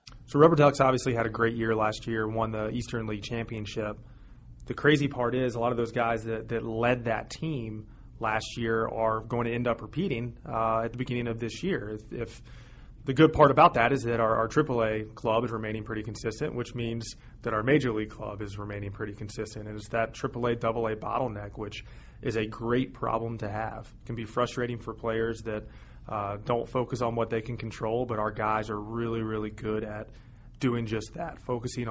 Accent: American